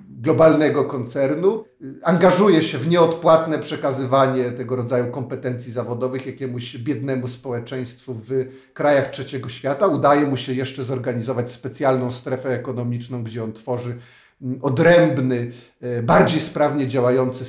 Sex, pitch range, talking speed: male, 130-165 Hz, 115 wpm